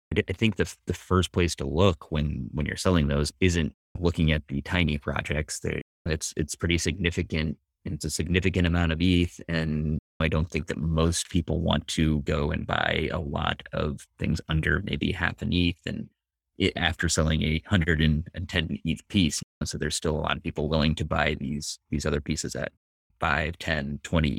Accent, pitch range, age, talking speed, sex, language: American, 75-90 Hz, 30-49, 195 wpm, male, English